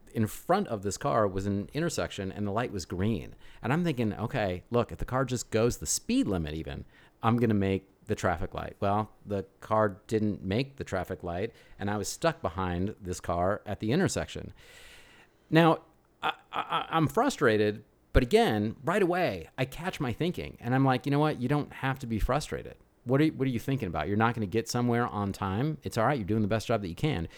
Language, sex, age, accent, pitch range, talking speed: English, male, 30-49, American, 100-125 Hz, 220 wpm